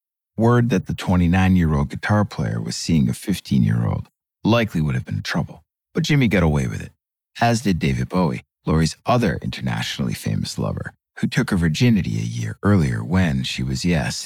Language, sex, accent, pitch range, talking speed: English, male, American, 75-110 Hz, 175 wpm